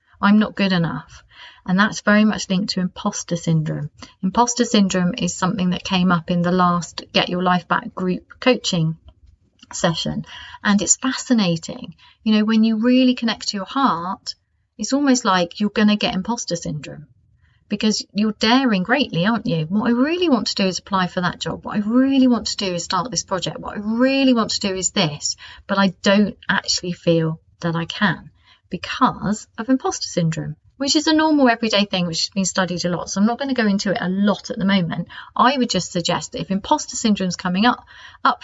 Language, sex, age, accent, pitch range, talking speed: English, female, 30-49, British, 175-235 Hz, 210 wpm